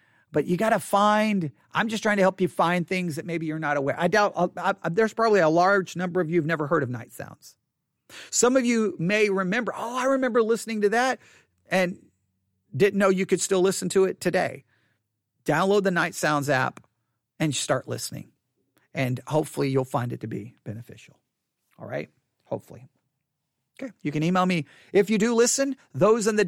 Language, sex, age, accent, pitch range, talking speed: English, male, 40-59, American, 150-220 Hz, 195 wpm